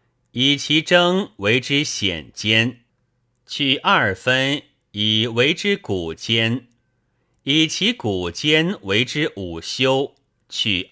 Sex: male